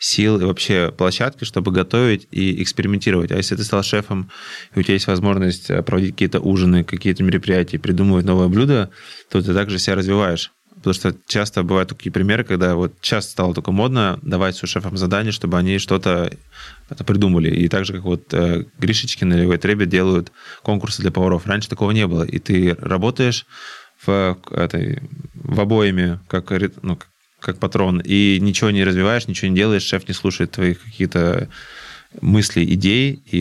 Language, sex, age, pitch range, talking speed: Russian, male, 20-39, 90-105 Hz, 170 wpm